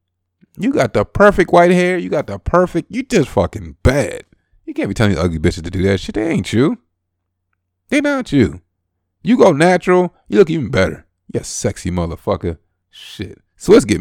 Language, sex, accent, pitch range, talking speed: English, male, American, 95-150 Hz, 195 wpm